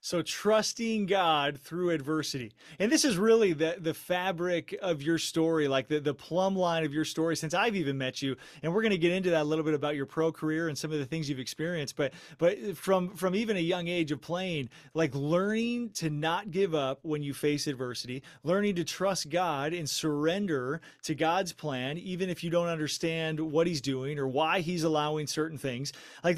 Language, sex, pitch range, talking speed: English, male, 150-190 Hz, 210 wpm